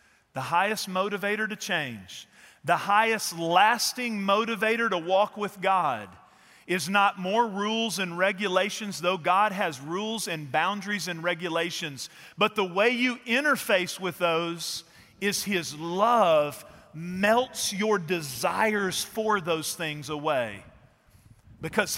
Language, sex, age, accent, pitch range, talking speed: English, male, 40-59, American, 155-210 Hz, 125 wpm